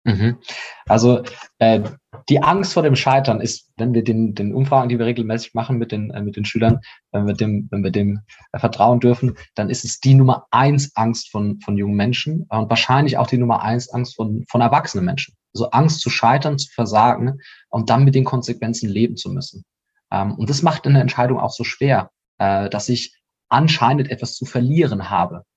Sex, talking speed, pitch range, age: male, 210 wpm, 110-135 Hz, 20-39